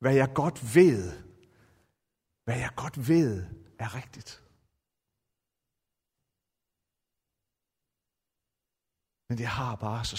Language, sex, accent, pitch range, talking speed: Danish, male, native, 105-150 Hz, 90 wpm